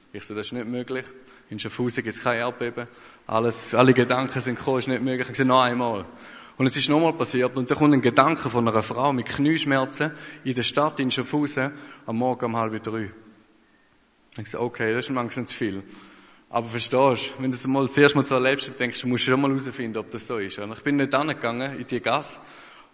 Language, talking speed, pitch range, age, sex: German, 235 wpm, 125-145 Hz, 20-39, male